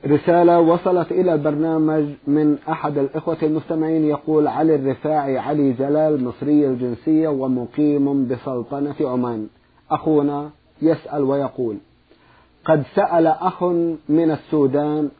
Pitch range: 140-165 Hz